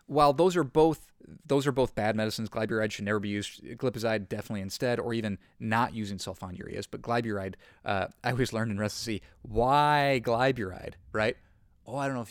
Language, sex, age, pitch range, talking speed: English, male, 30-49, 100-120 Hz, 185 wpm